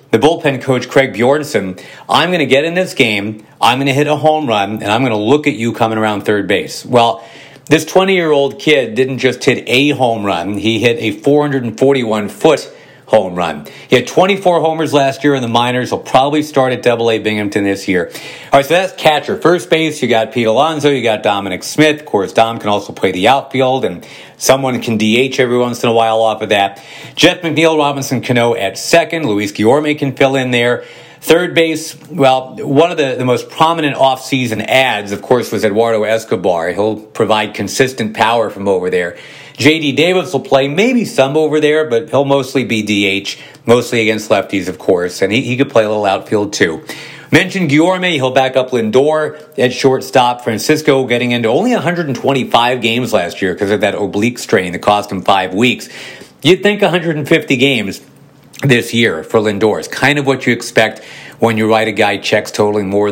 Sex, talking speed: male, 200 wpm